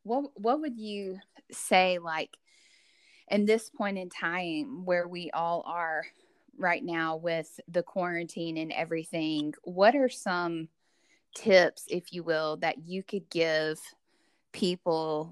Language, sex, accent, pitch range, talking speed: English, female, American, 165-200 Hz, 135 wpm